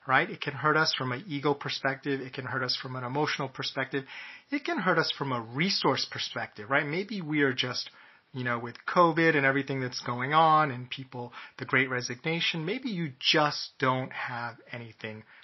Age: 30-49